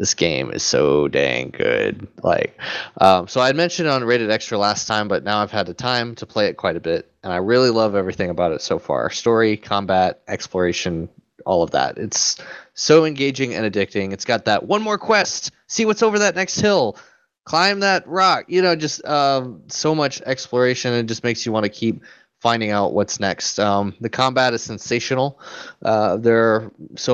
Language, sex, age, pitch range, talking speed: English, male, 20-39, 95-115 Hz, 200 wpm